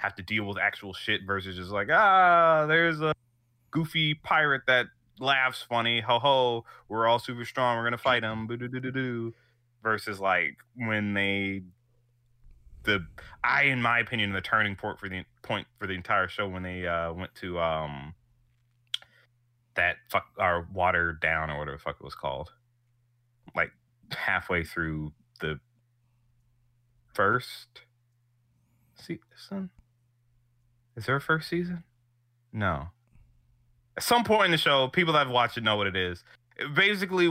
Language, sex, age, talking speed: English, male, 30-49, 150 wpm